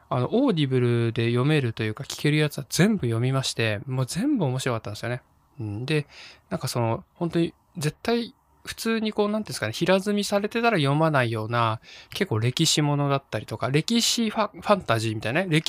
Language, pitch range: Japanese, 115-175 Hz